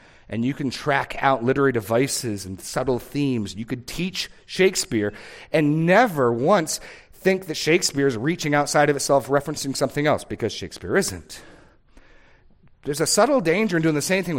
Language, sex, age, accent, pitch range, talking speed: English, male, 40-59, American, 105-145 Hz, 165 wpm